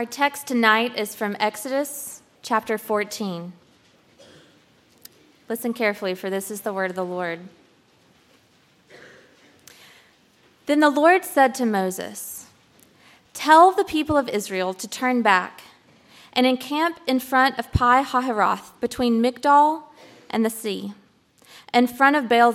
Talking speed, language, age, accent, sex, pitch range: 130 wpm, English, 20-39, American, female, 195-270 Hz